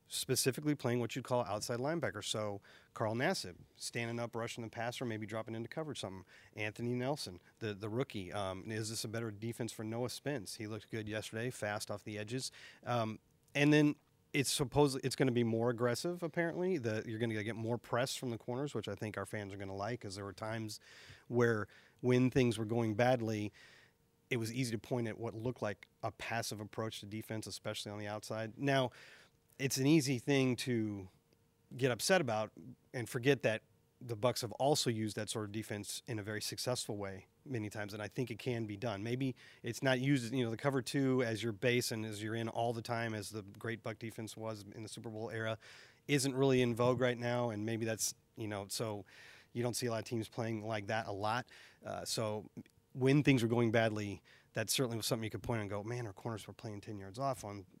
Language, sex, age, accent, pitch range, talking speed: English, male, 40-59, American, 110-125 Hz, 225 wpm